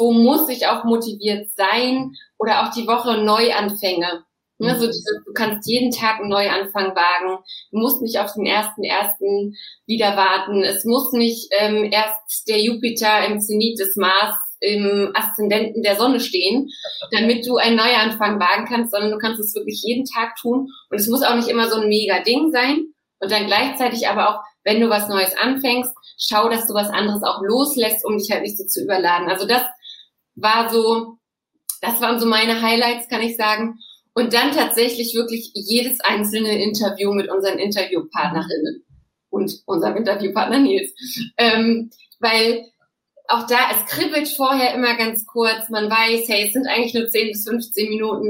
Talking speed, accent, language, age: 175 wpm, German, German, 20-39